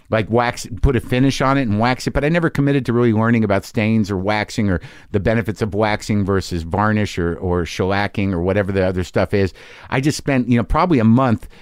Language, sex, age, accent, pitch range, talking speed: English, male, 50-69, American, 100-130 Hz, 230 wpm